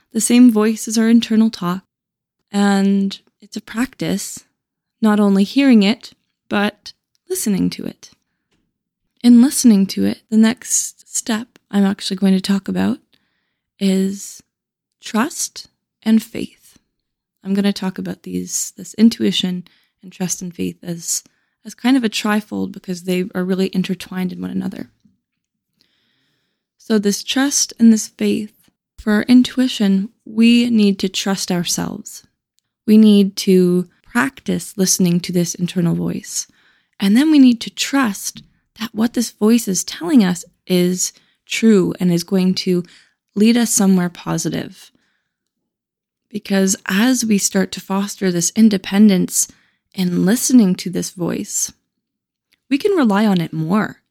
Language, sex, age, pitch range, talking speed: English, female, 20-39, 185-230 Hz, 140 wpm